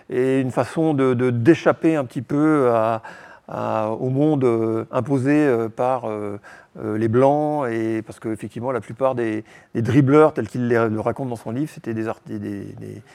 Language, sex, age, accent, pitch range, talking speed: French, male, 40-59, French, 115-145 Hz, 180 wpm